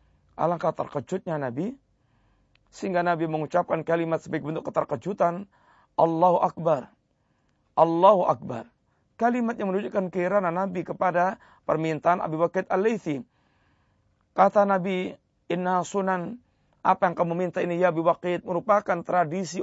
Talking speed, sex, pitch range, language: 115 wpm, male, 155-185 Hz, Malay